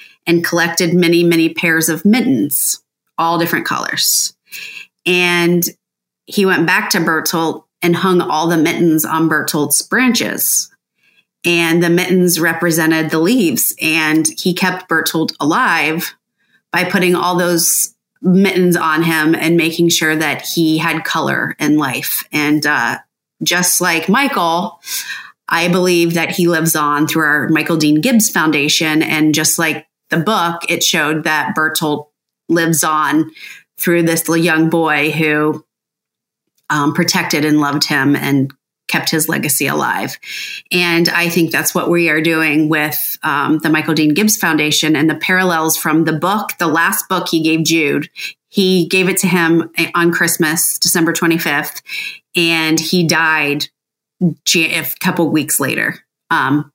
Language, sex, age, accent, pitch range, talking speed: English, female, 30-49, American, 155-175 Hz, 145 wpm